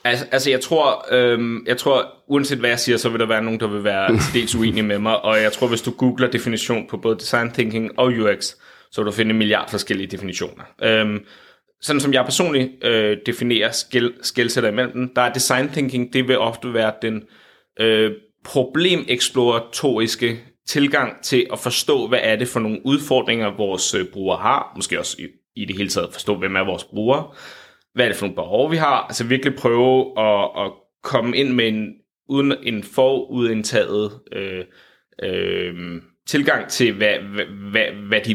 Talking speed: 180 wpm